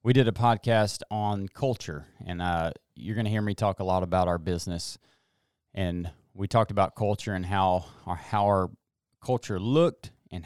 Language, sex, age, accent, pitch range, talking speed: English, male, 30-49, American, 90-110 Hz, 180 wpm